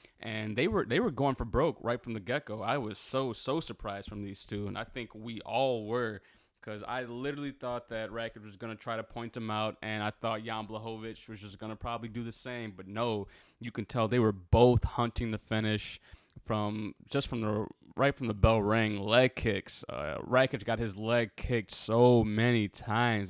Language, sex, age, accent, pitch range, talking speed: English, male, 20-39, American, 105-120 Hz, 215 wpm